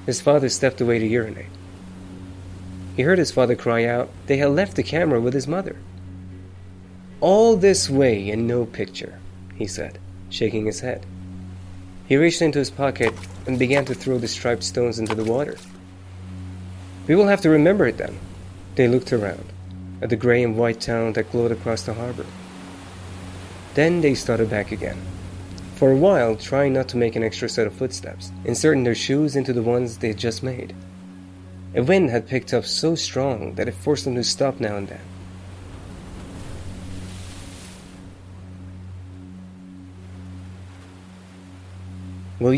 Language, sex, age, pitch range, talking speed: English, male, 30-49, 95-125 Hz, 155 wpm